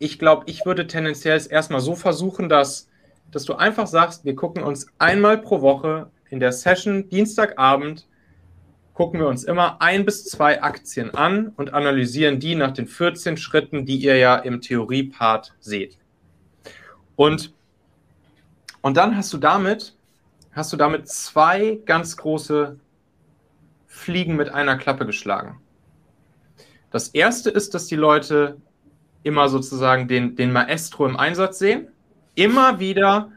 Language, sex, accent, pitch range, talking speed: German, male, German, 135-185 Hz, 140 wpm